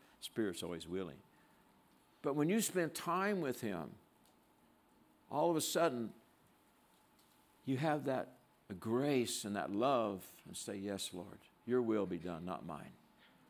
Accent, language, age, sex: American, English, 60-79, male